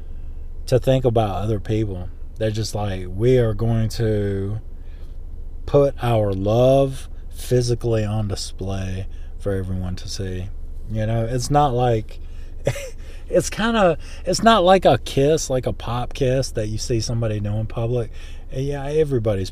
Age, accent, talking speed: 20-39, American, 145 wpm